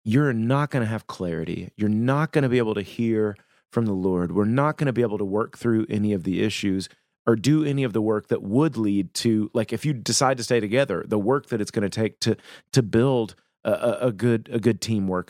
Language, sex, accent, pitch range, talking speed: English, male, American, 100-130 Hz, 245 wpm